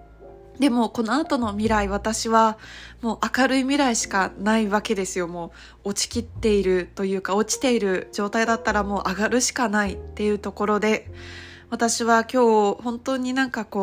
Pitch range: 205-240 Hz